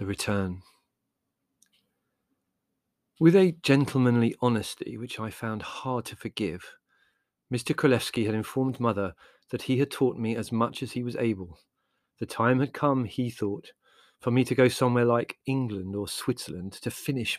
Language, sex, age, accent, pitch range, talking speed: English, male, 40-59, British, 105-135 Hz, 155 wpm